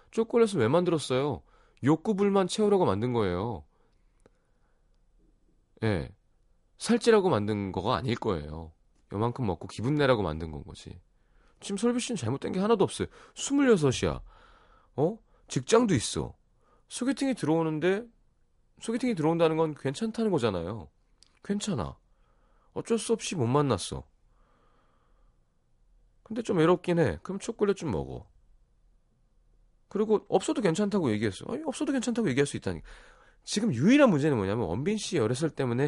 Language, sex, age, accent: Korean, male, 30-49, native